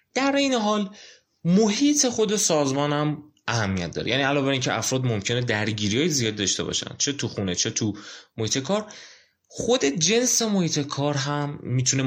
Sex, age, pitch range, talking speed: male, 30-49, 110-150 Hz, 165 wpm